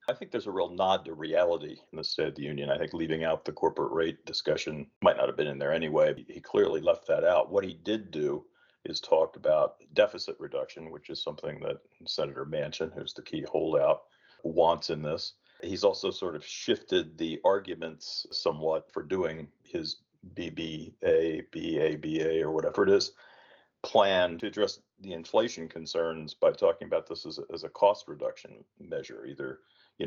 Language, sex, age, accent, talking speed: English, male, 40-59, American, 185 wpm